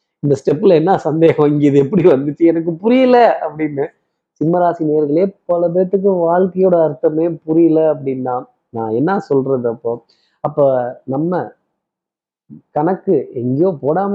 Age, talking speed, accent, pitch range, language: 20-39, 115 wpm, native, 135-175 Hz, Tamil